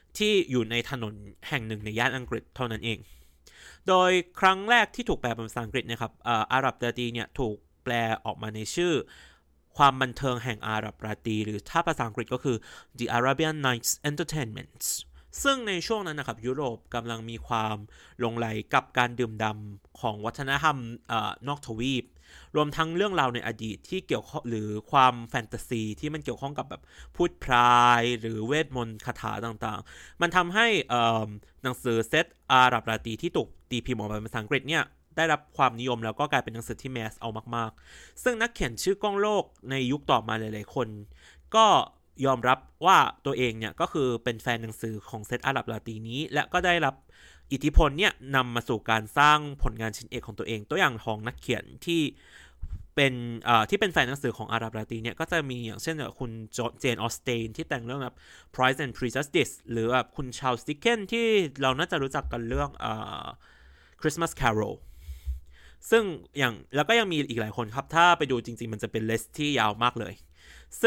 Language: Thai